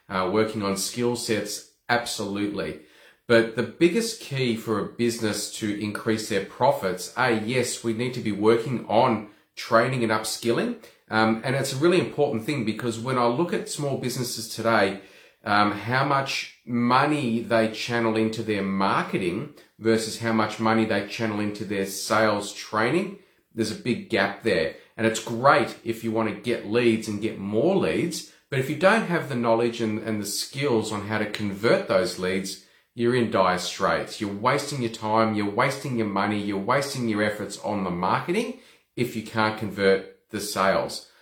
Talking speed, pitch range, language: 175 wpm, 105-120 Hz, English